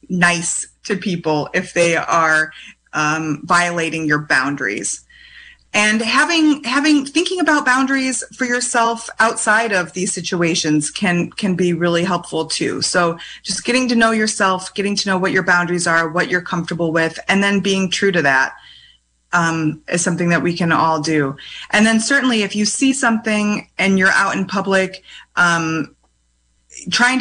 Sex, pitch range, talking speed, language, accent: female, 175-215 Hz, 160 wpm, English, American